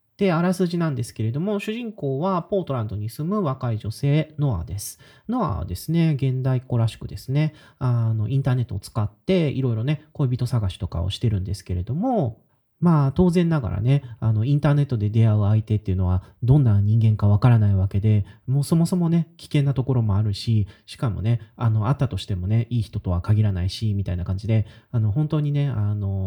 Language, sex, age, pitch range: Japanese, male, 30-49, 105-145 Hz